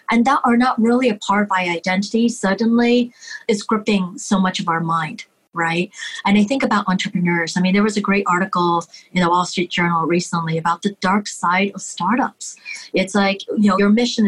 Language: English